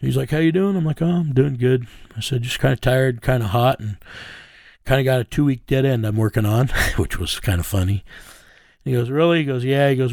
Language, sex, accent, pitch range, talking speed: English, male, American, 105-135 Hz, 265 wpm